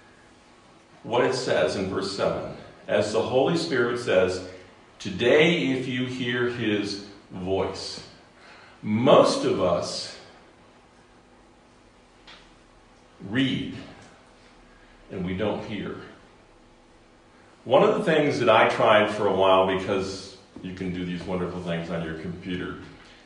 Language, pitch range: English, 95-120 Hz